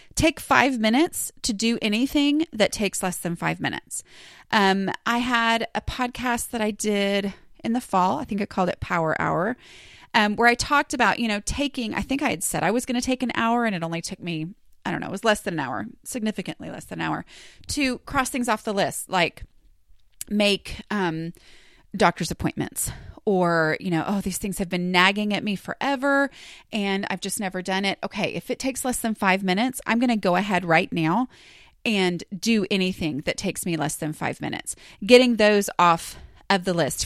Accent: American